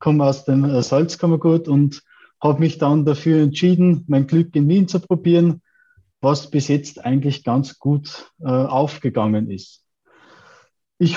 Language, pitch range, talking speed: German, 130-155 Hz, 135 wpm